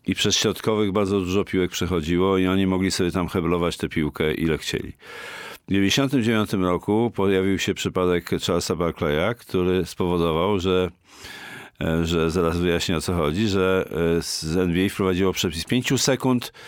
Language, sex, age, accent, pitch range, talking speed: Polish, male, 50-69, native, 95-125 Hz, 150 wpm